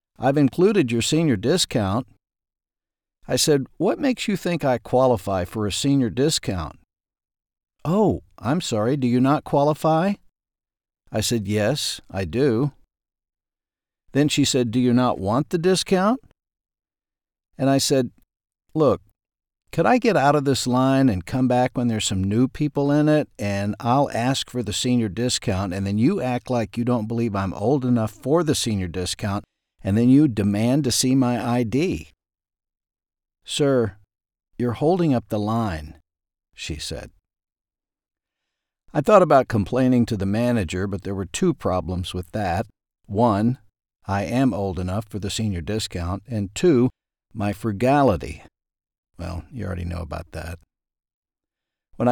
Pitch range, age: 100-130 Hz, 50-69